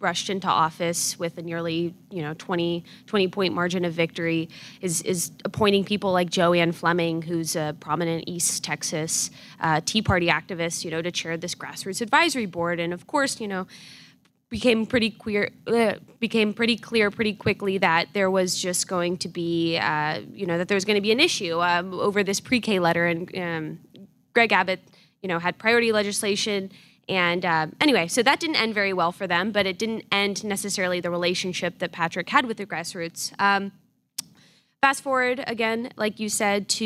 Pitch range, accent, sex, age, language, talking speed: 170-210 Hz, American, female, 20-39, English, 190 wpm